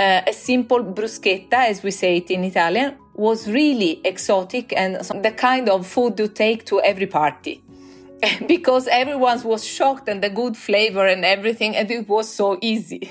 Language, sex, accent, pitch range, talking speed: English, female, Italian, 190-275 Hz, 175 wpm